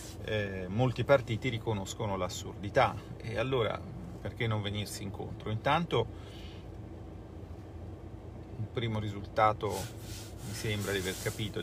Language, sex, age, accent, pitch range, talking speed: Italian, male, 40-59, native, 100-110 Hz, 105 wpm